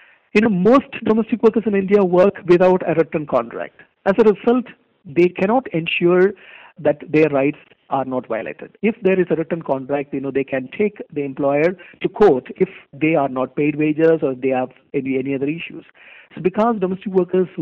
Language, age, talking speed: English, 50-69, 190 wpm